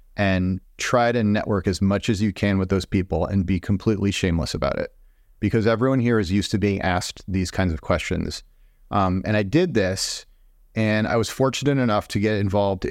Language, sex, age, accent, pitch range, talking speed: English, male, 30-49, American, 90-110 Hz, 200 wpm